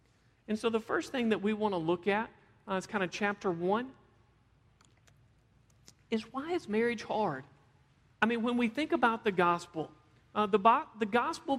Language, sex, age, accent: English, male, 40-59, American